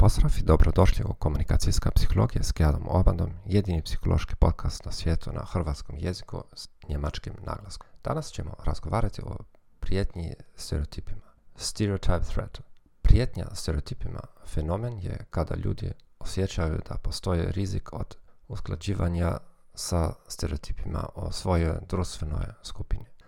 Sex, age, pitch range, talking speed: male, 40-59, 85-105 Hz, 120 wpm